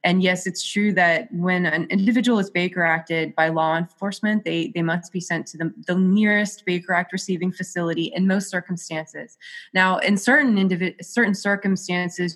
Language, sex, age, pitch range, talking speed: English, female, 20-39, 170-195 Hz, 170 wpm